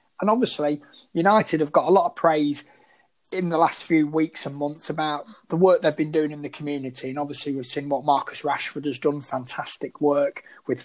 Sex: male